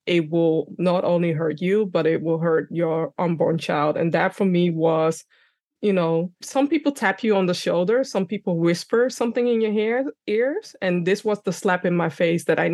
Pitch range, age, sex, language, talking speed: 165-200 Hz, 20-39, female, English, 205 wpm